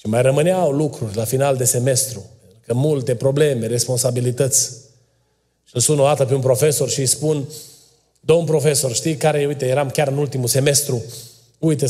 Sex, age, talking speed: male, 30-49, 160 wpm